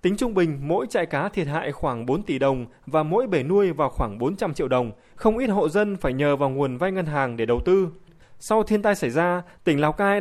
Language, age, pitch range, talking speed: Vietnamese, 20-39, 125-180 Hz, 255 wpm